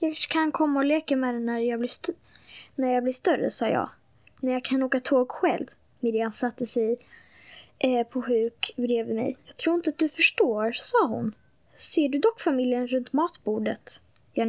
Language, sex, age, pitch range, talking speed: Swedish, female, 10-29, 230-275 Hz, 180 wpm